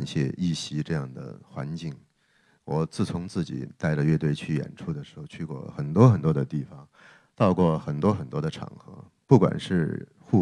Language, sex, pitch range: Chinese, male, 80-110 Hz